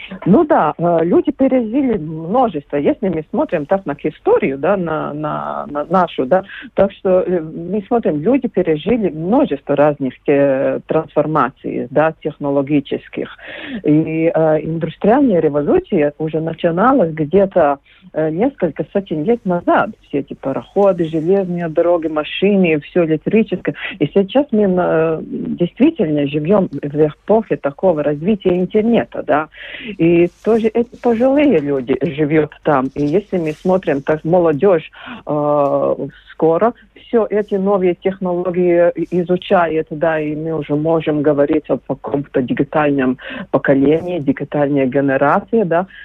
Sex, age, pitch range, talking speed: female, 40-59, 150-215 Hz, 120 wpm